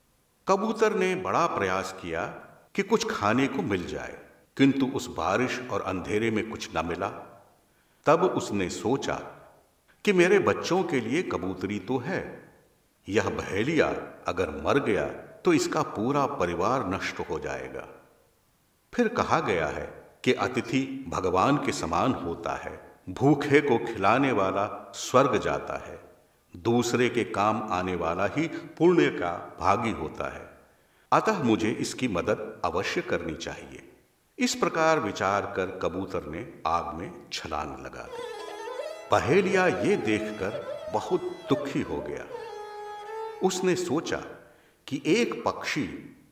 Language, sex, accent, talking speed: Hindi, male, native, 130 wpm